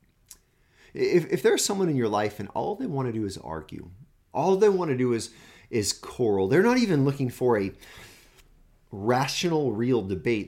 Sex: male